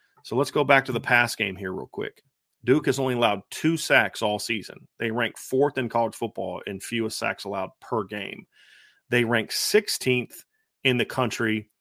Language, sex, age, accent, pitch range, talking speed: English, male, 40-59, American, 105-130 Hz, 190 wpm